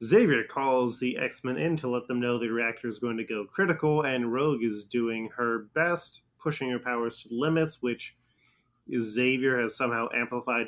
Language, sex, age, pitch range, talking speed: English, male, 20-39, 115-130 Hz, 180 wpm